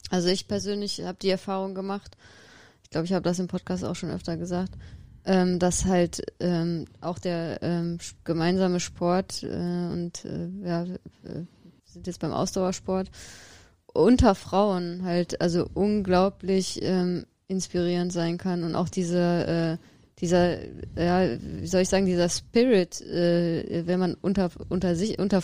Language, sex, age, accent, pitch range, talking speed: German, female, 20-39, German, 175-195 Hz, 130 wpm